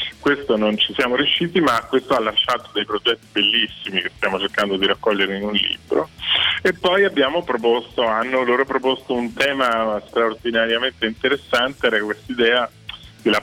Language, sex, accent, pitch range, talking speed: Italian, male, native, 105-120 Hz, 155 wpm